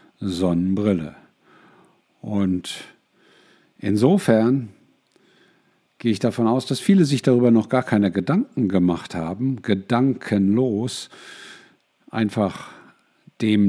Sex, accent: male, German